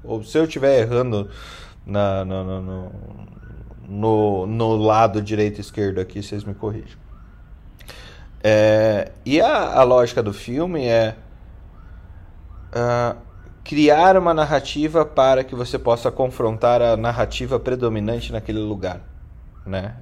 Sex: male